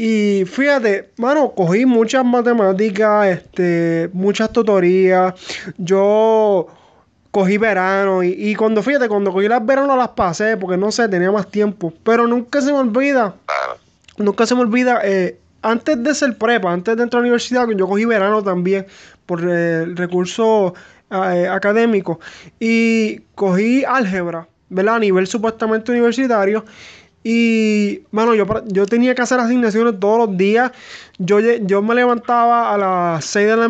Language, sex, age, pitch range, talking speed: English, male, 20-39, 195-240 Hz, 155 wpm